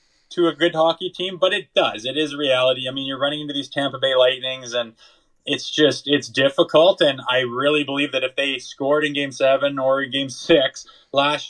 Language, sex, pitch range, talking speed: English, male, 115-140 Hz, 210 wpm